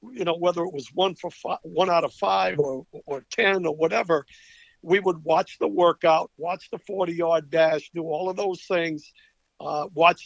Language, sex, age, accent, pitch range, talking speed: English, male, 50-69, American, 160-200 Hz, 200 wpm